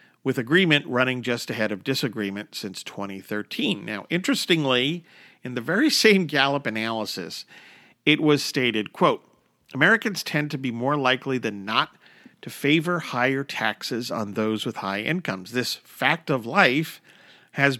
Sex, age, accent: male, 50-69, American